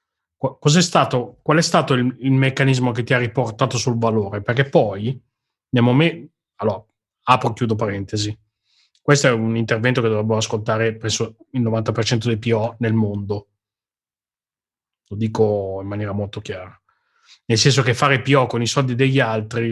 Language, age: Italian, 30-49